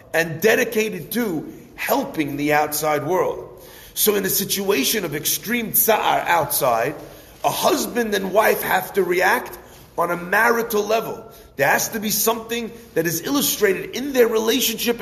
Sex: male